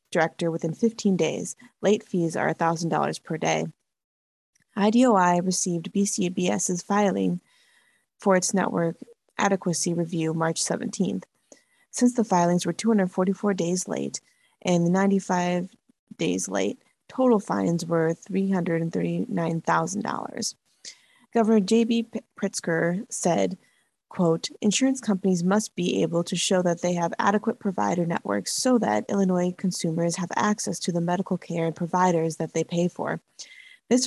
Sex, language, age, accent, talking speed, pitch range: female, English, 20-39, American, 125 wpm, 170-200 Hz